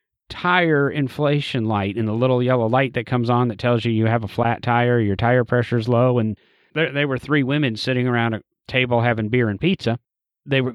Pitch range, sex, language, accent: 115-145 Hz, male, English, American